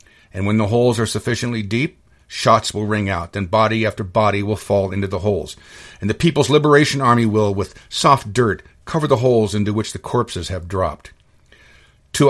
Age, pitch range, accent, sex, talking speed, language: 50-69, 105-135 Hz, American, male, 190 wpm, English